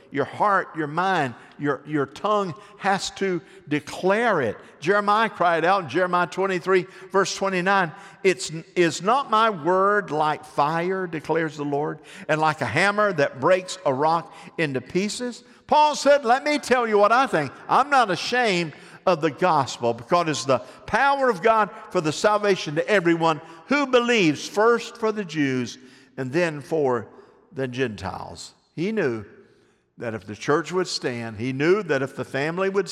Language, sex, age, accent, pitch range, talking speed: English, male, 50-69, American, 135-195 Hz, 165 wpm